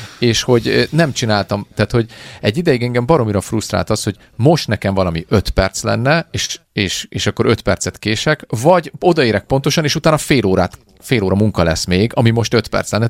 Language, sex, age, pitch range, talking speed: Hungarian, male, 30-49, 90-120 Hz, 195 wpm